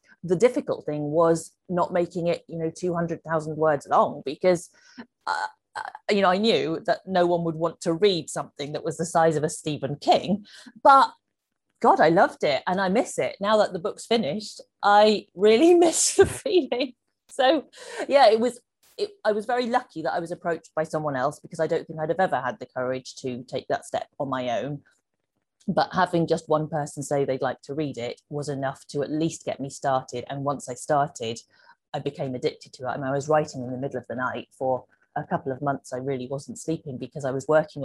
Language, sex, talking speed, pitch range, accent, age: English, female, 215 wpm, 145-210 Hz, British, 30-49